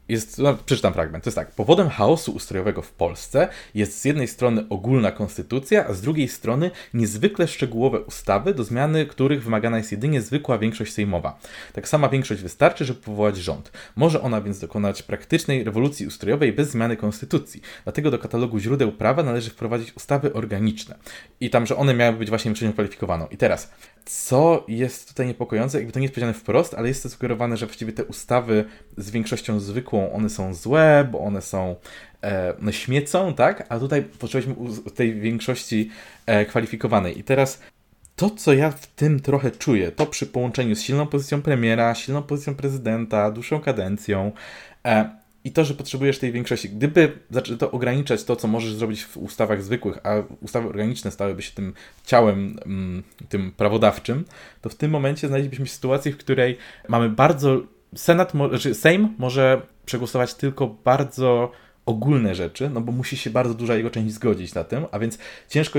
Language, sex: Polish, male